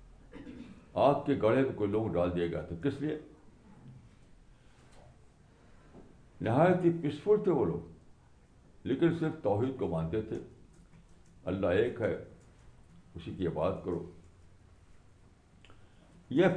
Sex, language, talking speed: male, Urdu, 115 wpm